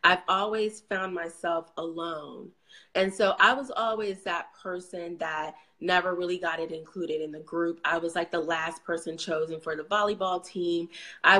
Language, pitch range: English, 165-200 Hz